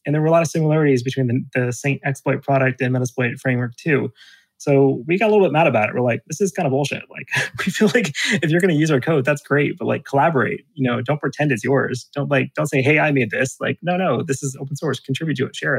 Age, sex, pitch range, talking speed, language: 30-49, male, 120-140 Hz, 280 wpm, English